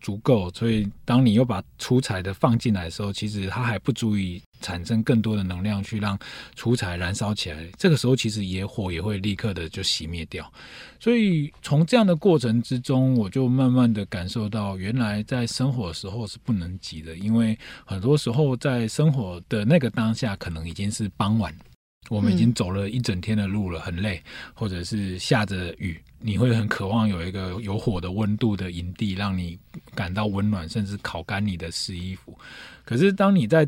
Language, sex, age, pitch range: Chinese, male, 20-39, 95-120 Hz